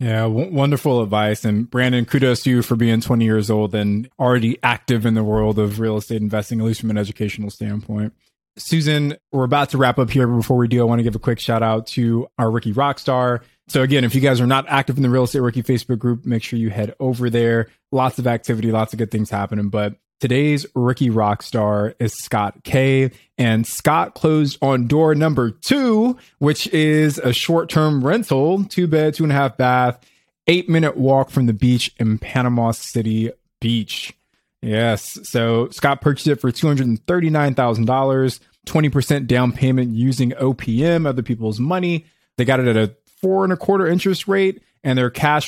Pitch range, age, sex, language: 115-140 Hz, 20-39, male, English